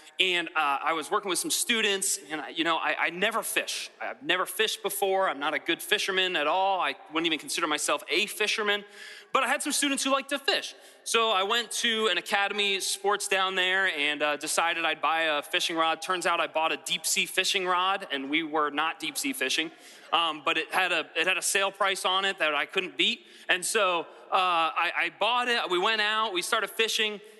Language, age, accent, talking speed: English, 30-49, American, 220 wpm